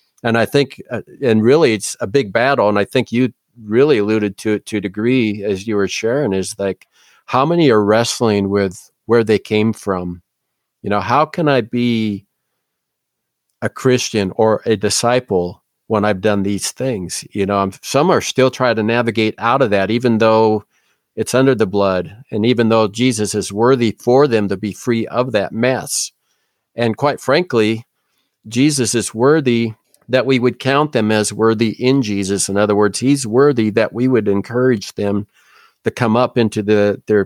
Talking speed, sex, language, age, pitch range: 185 wpm, male, English, 50-69, 100-120 Hz